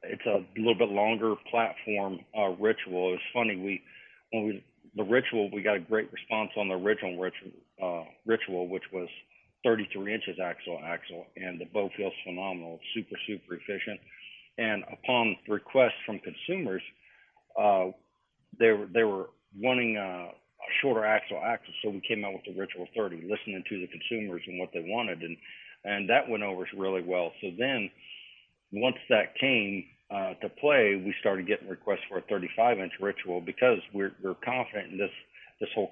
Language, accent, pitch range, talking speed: English, American, 90-110 Hz, 175 wpm